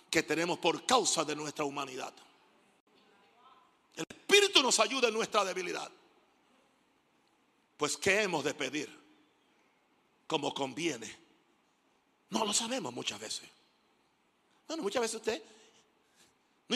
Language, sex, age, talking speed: Spanish, male, 60-79, 110 wpm